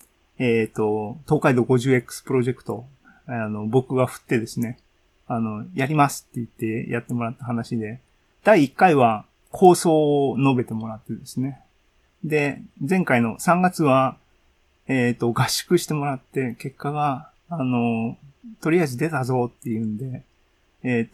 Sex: male